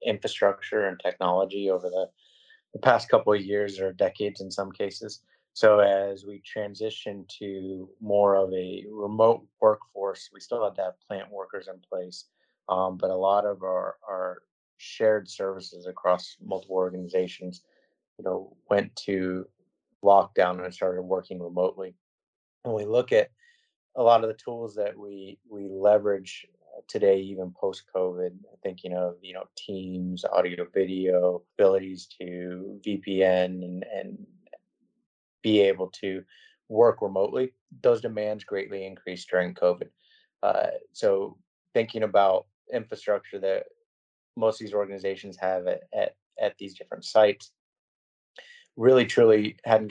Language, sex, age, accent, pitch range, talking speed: English, male, 30-49, American, 95-110 Hz, 135 wpm